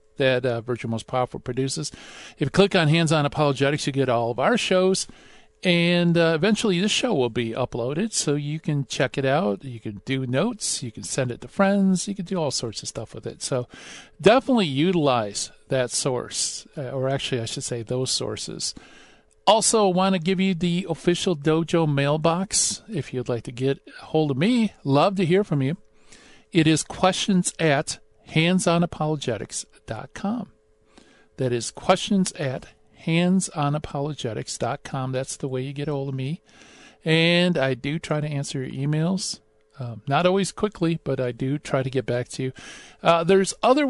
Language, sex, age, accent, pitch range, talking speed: English, male, 50-69, American, 130-175 Hz, 185 wpm